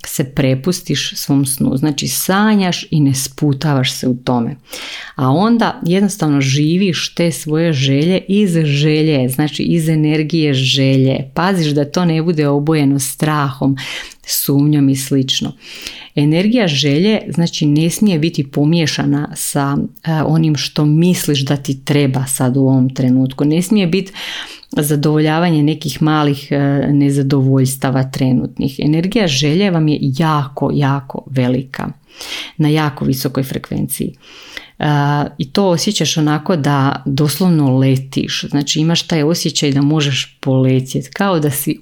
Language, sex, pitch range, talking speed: Croatian, female, 140-165 Hz, 130 wpm